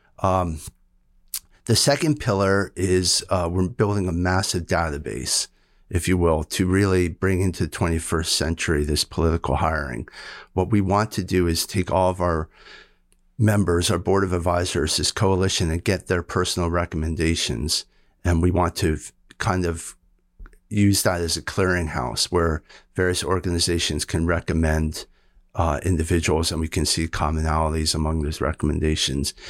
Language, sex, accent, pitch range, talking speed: English, male, American, 80-95 Hz, 145 wpm